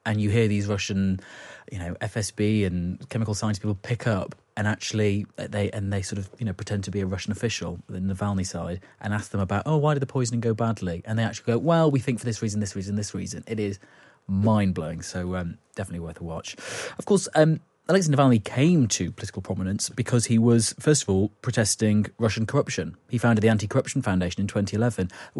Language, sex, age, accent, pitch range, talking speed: English, male, 30-49, British, 100-125 Hz, 220 wpm